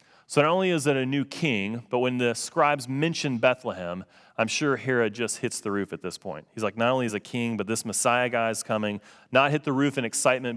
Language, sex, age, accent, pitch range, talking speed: English, male, 30-49, American, 115-165 Hz, 245 wpm